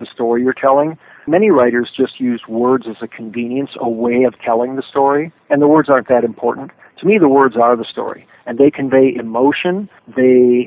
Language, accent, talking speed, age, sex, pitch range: English, American, 200 wpm, 40-59, male, 120-140 Hz